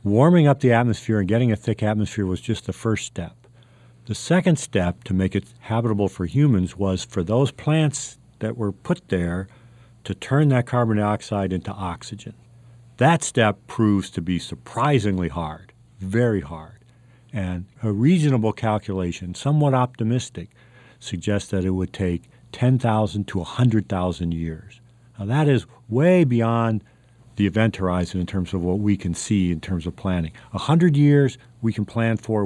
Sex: male